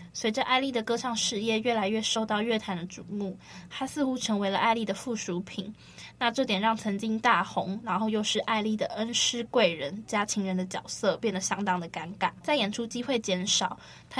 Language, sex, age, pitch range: Chinese, female, 10-29, 190-230 Hz